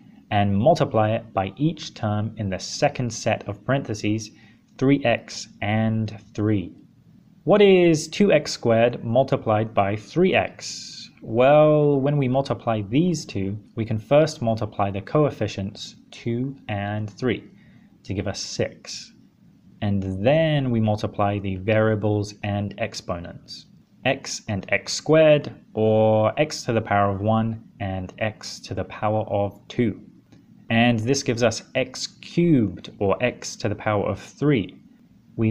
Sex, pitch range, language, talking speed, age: male, 105-150 Hz, English, 135 wpm, 20-39